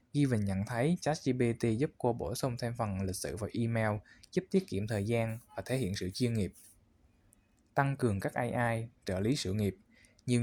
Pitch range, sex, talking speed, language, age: 105-130 Hz, male, 200 wpm, Vietnamese, 20-39